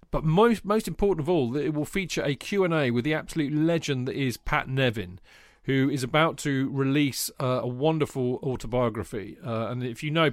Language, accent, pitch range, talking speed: English, British, 125-160 Hz, 205 wpm